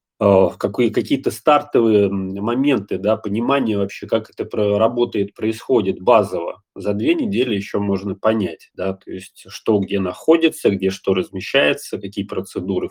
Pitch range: 100-120 Hz